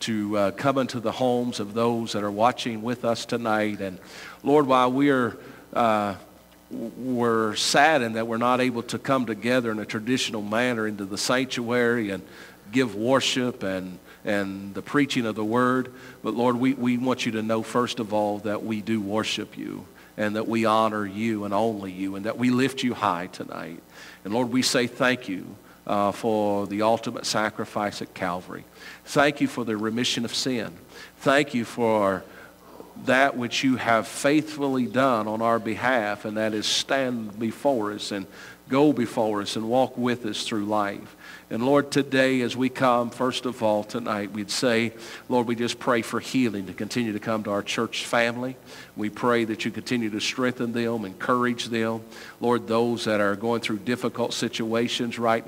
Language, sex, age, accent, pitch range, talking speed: English, male, 50-69, American, 110-125 Hz, 180 wpm